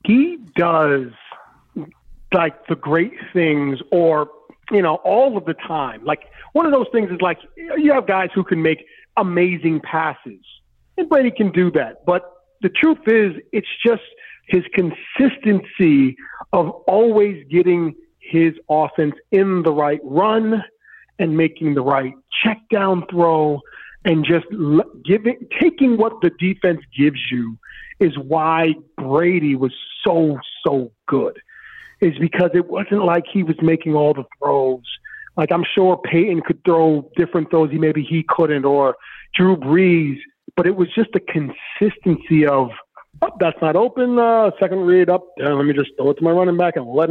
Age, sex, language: 40-59, male, English